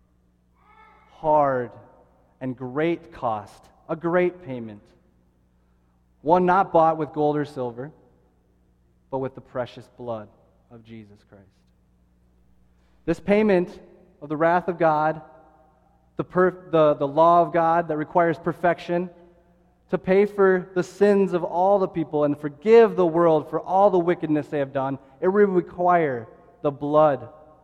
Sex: male